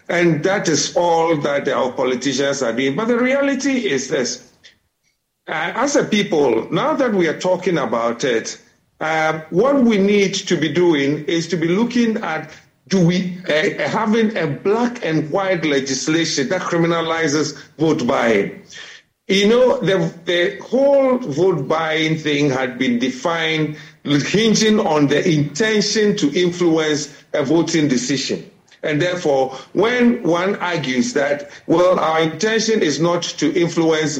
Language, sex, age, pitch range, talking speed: English, male, 50-69, 145-195 Hz, 145 wpm